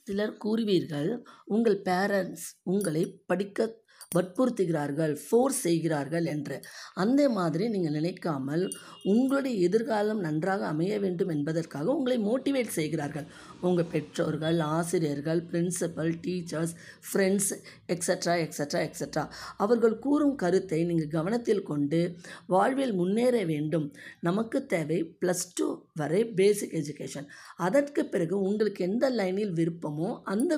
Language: Tamil